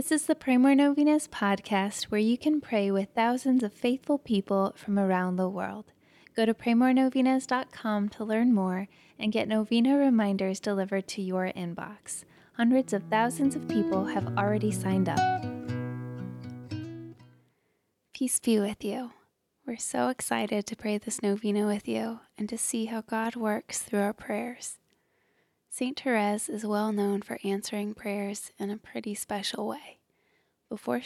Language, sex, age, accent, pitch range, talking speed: English, female, 10-29, American, 200-230 Hz, 155 wpm